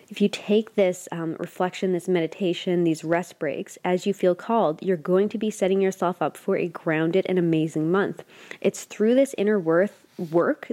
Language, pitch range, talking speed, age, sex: English, 170-195 Hz, 190 wpm, 20-39, female